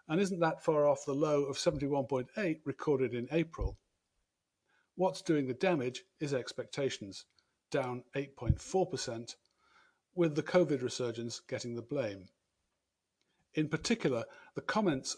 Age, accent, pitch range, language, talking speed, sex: 50-69, British, 125-170 Hz, English, 125 wpm, male